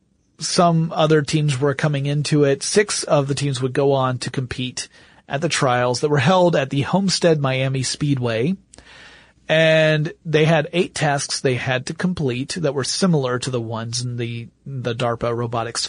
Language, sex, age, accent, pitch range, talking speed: English, male, 40-59, American, 125-155 Hz, 180 wpm